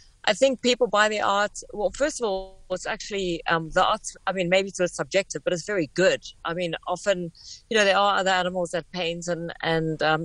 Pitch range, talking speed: 160-190 Hz, 220 wpm